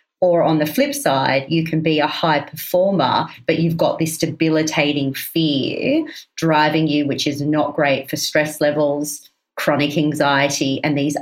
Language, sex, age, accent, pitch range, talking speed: English, female, 40-59, Australian, 145-170 Hz, 160 wpm